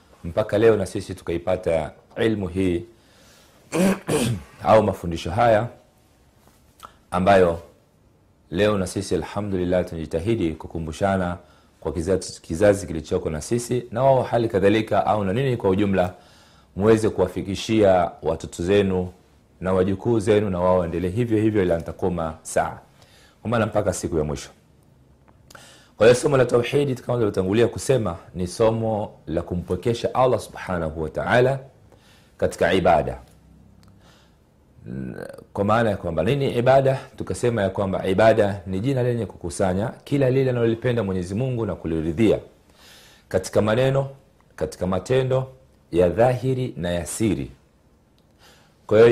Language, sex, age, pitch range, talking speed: Swahili, male, 40-59, 90-115 Hz, 120 wpm